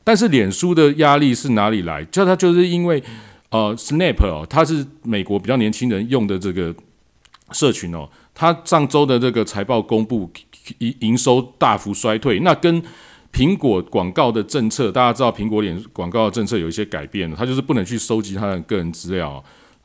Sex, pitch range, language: male, 95-135 Hz, Chinese